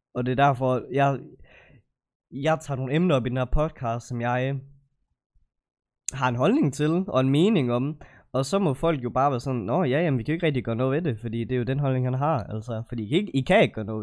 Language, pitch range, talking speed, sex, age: Danish, 115-140 Hz, 265 wpm, male, 20-39